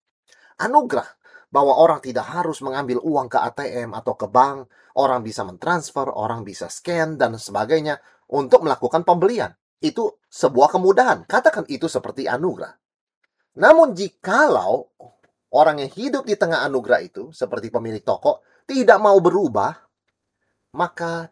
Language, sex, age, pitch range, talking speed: Indonesian, male, 30-49, 120-185 Hz, 130 wpm